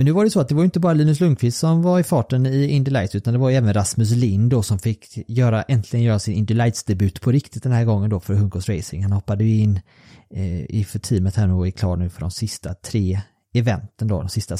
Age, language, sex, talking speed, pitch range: 30-49, Swedish, male, 260 wpm, 100-130 Hz